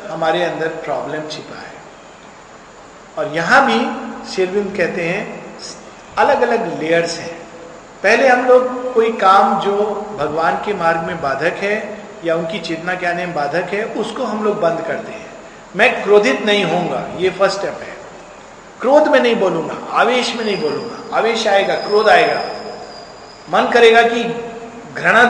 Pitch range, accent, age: 175-245 Hz, native, 50-69